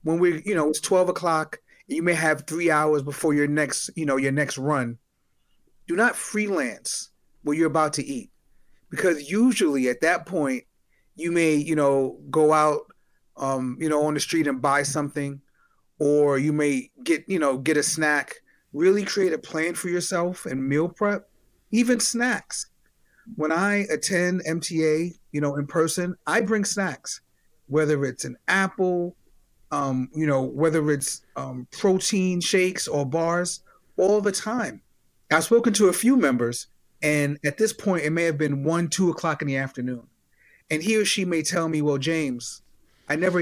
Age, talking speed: 30-49, 175 wpm